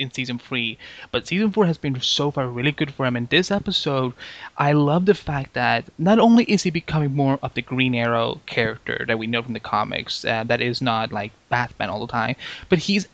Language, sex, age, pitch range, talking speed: English, male, 20-39, 125-160 Hz, 230 wpm